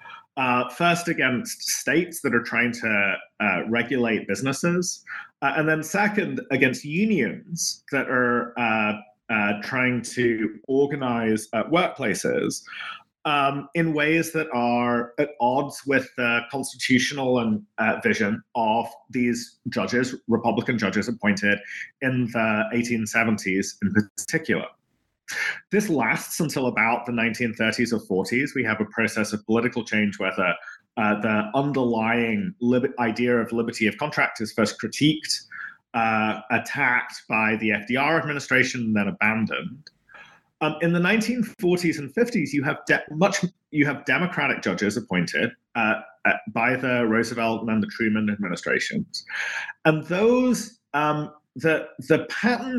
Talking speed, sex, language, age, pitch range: 135 wpm, male, English, 30-49, 115-155 Hz